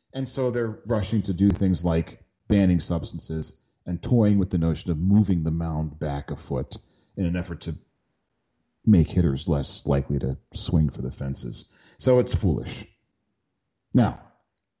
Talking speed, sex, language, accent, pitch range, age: 160 wpm, male, English, American, 95-135 Hz, 40-59